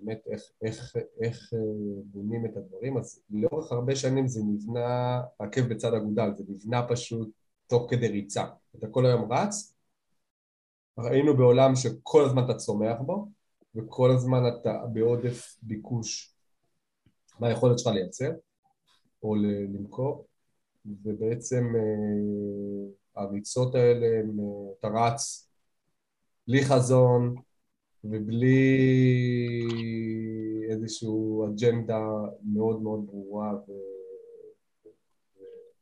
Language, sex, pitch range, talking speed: Hebrew, male, 105-125 Hz, 100 wpm